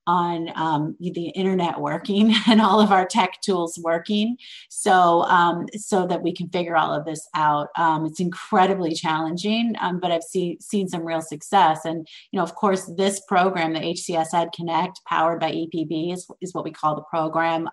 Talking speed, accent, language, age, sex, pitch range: 190 wpm, American, English, 30-49, female, 160-190 Hz